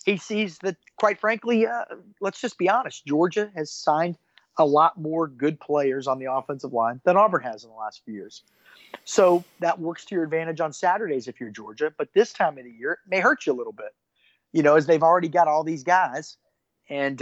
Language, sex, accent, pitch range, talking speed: English, male, American, 135-180 Hz, 225 wpm